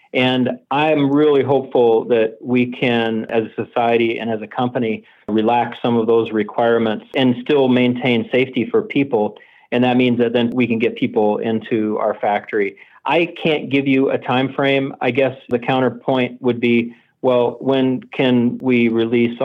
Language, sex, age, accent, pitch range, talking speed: English, male, 40-59, American, 110-130 Hz, 170 wpm